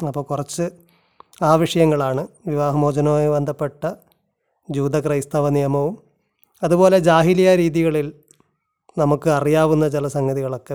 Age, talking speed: 30-49, 85 wpm